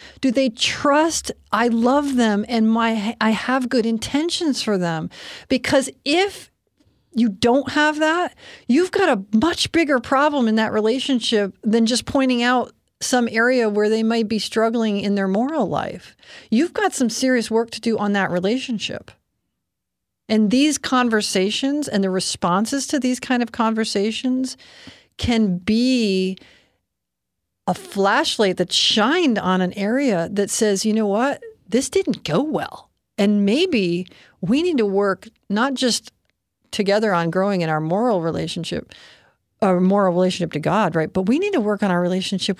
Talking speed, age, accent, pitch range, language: 160 wpm, 40-59, American, 205-260 Hz, English